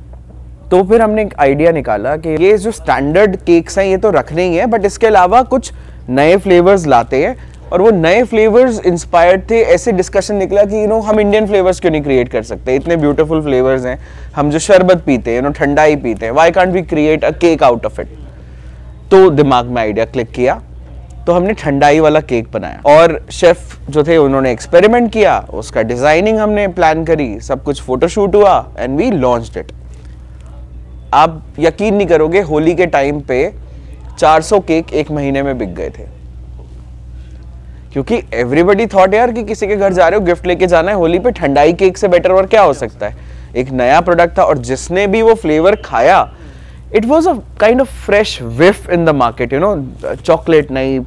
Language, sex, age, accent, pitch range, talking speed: Hindi, male, 20-39, native, 125-195 Hz, 145 wpm